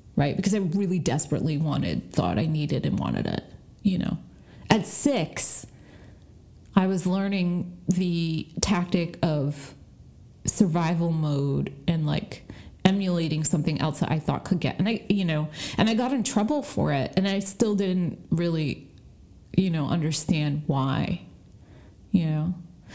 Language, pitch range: English, 150-200 Hz